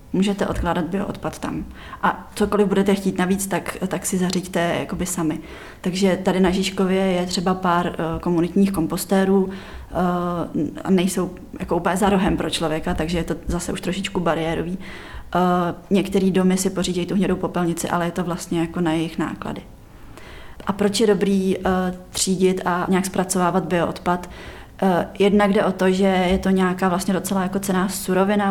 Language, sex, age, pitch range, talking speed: Czech, female, 20-39, 170-195 Hz, 155 wpm